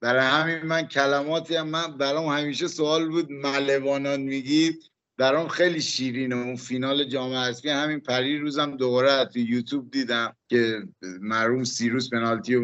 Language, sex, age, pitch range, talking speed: Persian, male, 50-69, 125-155 Hz, 145 wpm